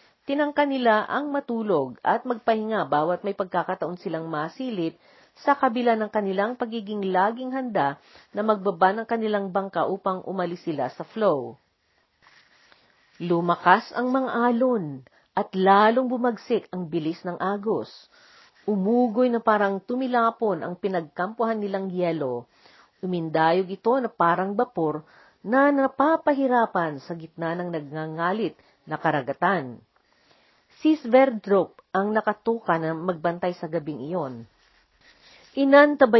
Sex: female